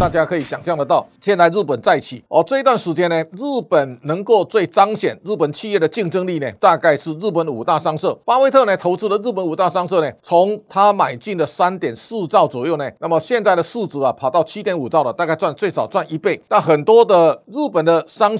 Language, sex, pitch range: Chinese, male, 160-200 Hz